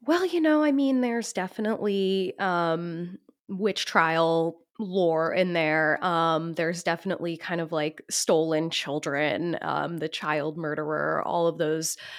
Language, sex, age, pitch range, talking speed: English, female, 20-39, 165-195 Hz, 140 wpm